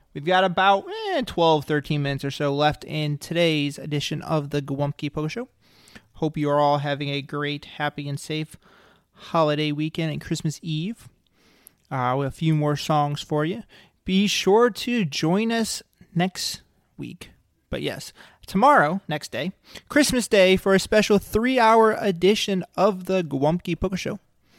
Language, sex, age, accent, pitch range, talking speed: English, male, 30-49, American, 145-190 Hz, 155 wpm